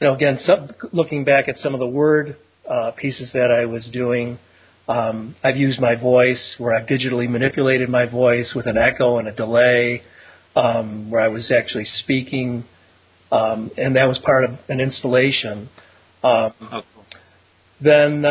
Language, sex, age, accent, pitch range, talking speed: English, male, 40-59, American, 115-135 Hz, 160 wpm